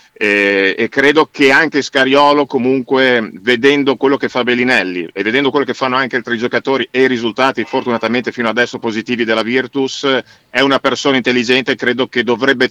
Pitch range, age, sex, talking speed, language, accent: 115-130 Hz, 50-69, male, 175 wpm, Italian, native